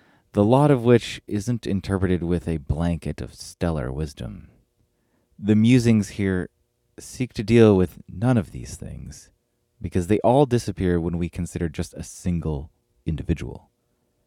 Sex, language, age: male, English, 30-49